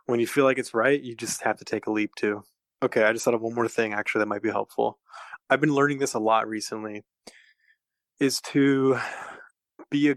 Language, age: English, 20-39